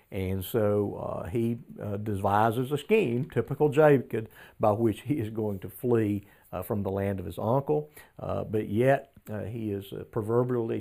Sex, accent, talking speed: male, American, 180 wpm